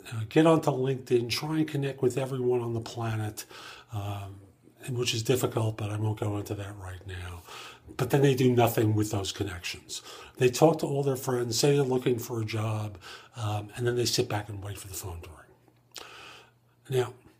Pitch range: 105-125 Hz